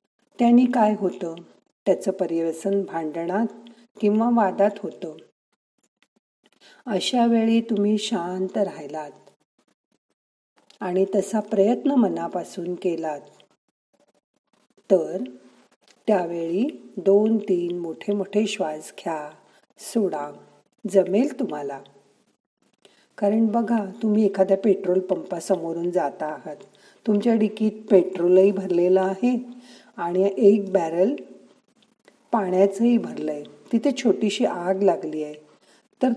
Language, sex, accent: Marathi, female, native